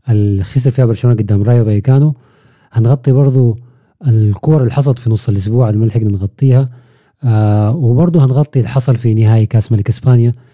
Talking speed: 160 wpm